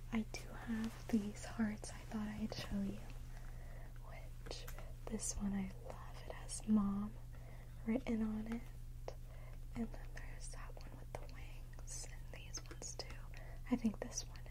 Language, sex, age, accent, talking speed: English, female, 20-39, American, 155 wpm